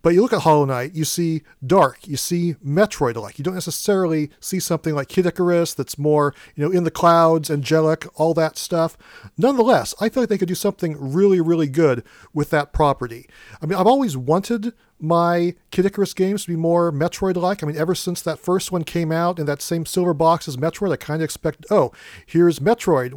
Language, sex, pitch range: English, male, 145-185 Hz